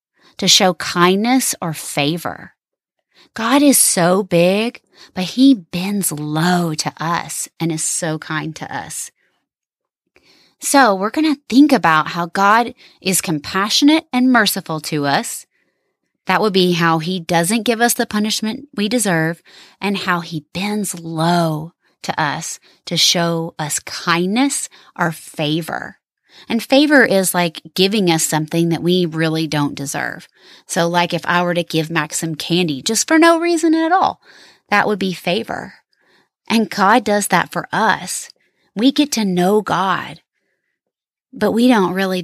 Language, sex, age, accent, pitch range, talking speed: English, female, 30-49, American, 165-215 Hz, 150 wpm